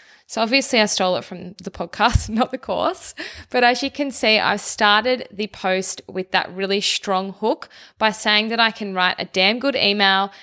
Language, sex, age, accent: English, female, 20-39, Australian